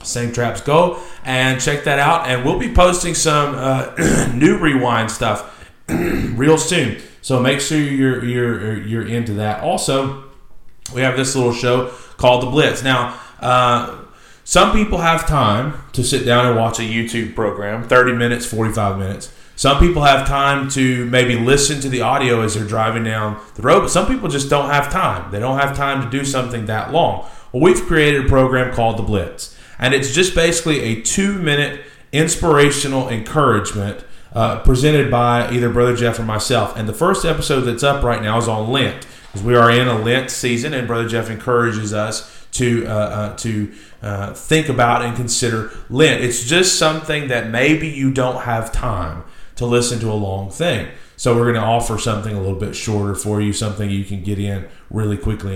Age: 30-49